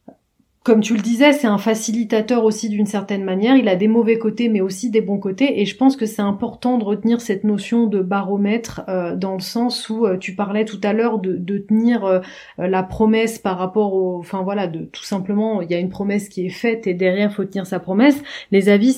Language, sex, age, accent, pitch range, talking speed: French, female, 30-49, French, 185-210 Hz, 235 wpm